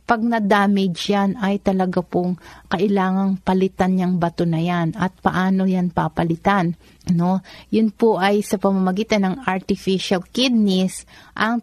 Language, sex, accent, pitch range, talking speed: Filipino, female, native, 175-205 Hz, 135 wpm